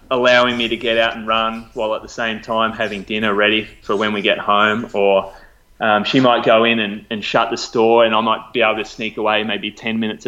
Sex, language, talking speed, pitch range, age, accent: male, English, 245 wpm, 105-125 Hz, 20-39, Australian